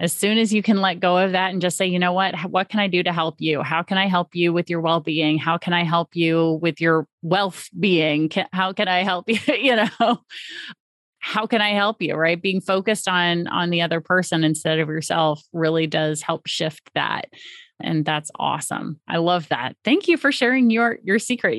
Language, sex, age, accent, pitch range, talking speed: English, female, 30-49, American, 170-210 Hz, 220 wpm